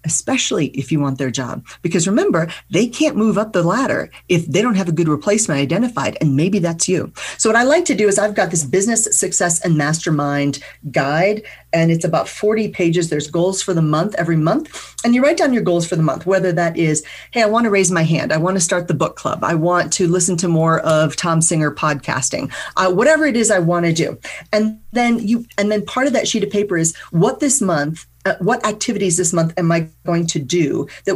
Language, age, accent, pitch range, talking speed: English, 40-59, American, 160-205 Hz, 235 wpm